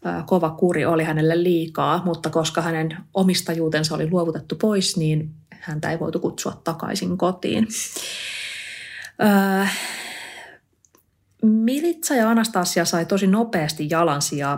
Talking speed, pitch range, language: 110 wpm, 155-195 Hz, Finnish